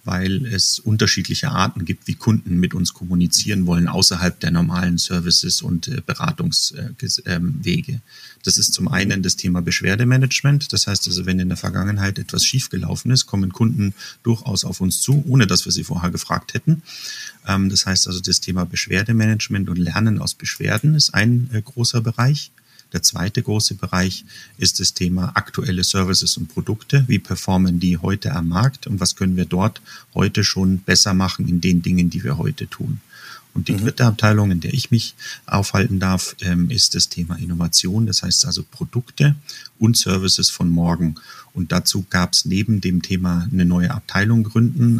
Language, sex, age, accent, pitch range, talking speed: German, male, 40-59, German, 90-115 Hz, 170 wpm